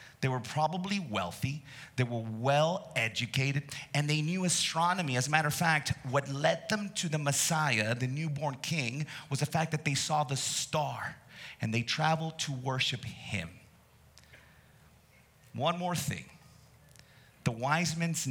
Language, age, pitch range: English, 30-49, 120-155 Hz